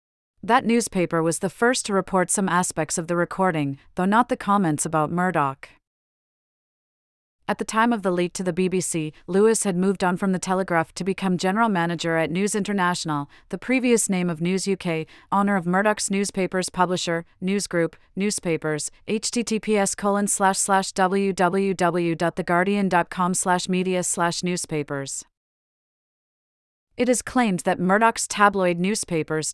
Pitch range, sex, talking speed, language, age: 170-200 Hz, female, 130 wpm, English, 30-49